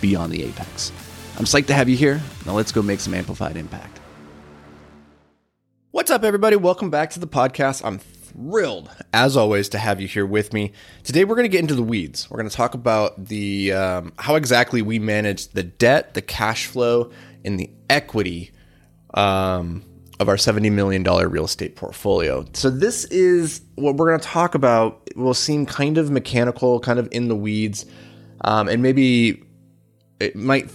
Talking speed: 185 wpm